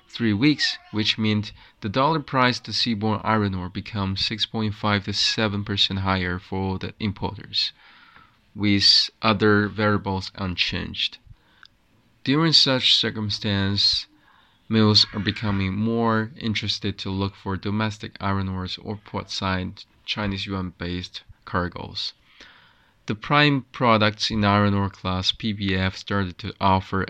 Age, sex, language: 20-39, male, English